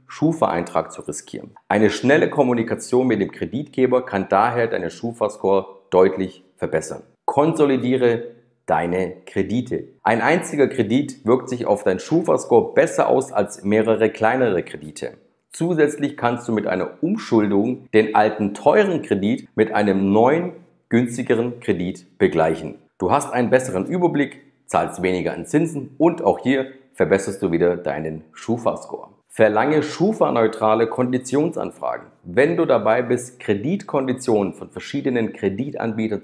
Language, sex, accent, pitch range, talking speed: German, male, German, 95-130 Hz, 125 wpm